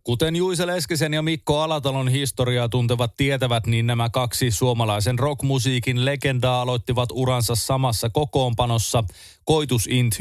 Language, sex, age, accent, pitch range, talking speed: Finnish, male, 30-49, native, 115-140 Hz, 120 wpm